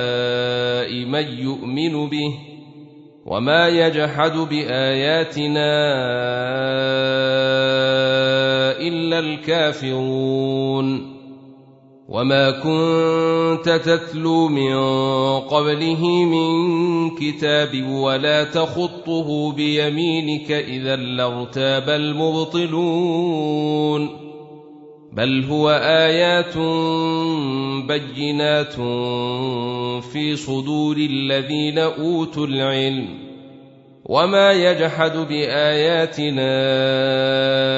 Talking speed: 50 wpm